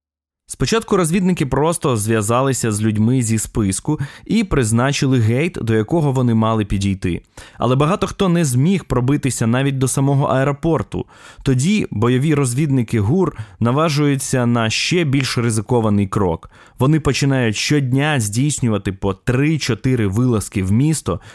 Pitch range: 110-145 Hz